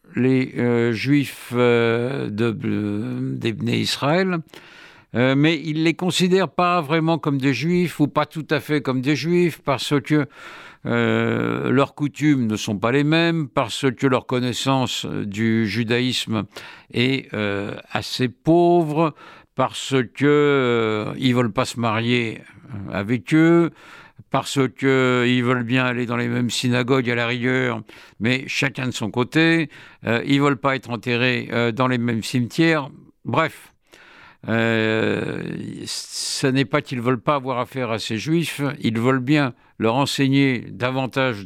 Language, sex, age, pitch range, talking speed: French, male, 60-79, 115-145 Hz, 150 wpm